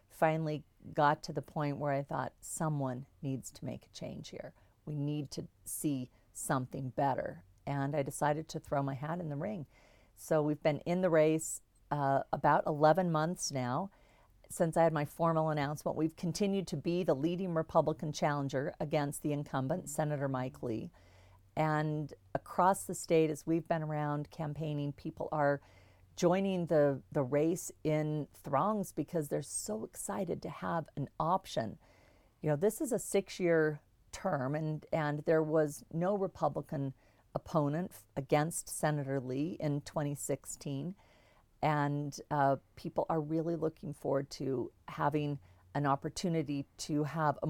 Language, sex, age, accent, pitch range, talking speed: English, female, 40-59, American, 140-160 Hz, 155 wpm